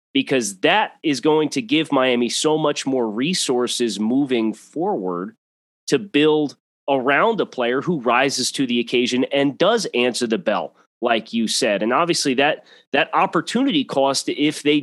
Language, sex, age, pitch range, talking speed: English, male, 30-49, 120-160 Hz, 160 wpm